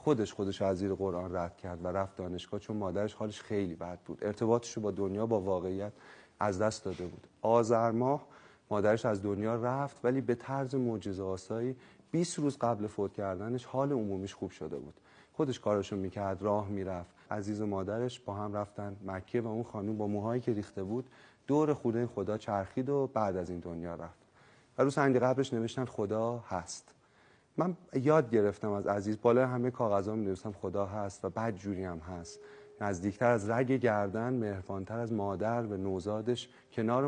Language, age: Persian, 30-49